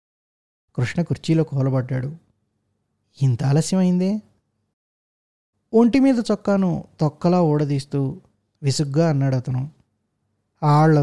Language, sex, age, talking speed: Telugu, male, 20-39, 80 wpm